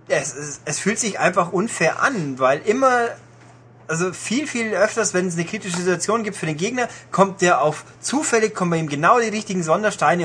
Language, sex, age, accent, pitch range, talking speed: German, male, 30-49, German, 145-185 Hz, 200 wpm